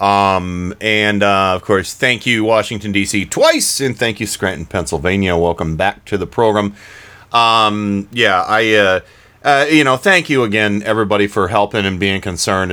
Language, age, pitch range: English, 30-49, 95-110 Hz